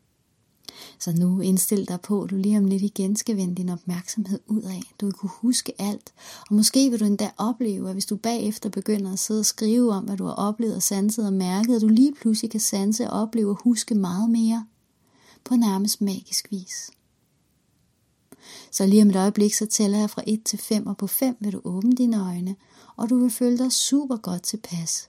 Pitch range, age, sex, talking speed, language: 185-220 Hz, 30-49, female, 215 wpm, Danish